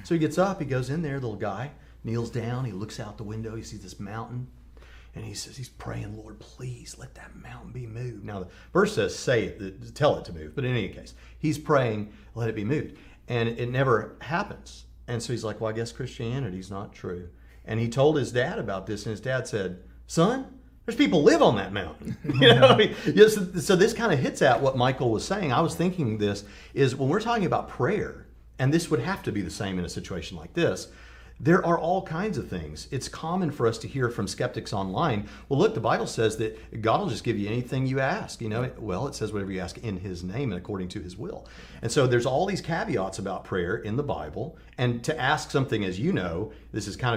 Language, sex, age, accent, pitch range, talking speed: English, male, 40-59, American, 100-140 Hz, 235 wpm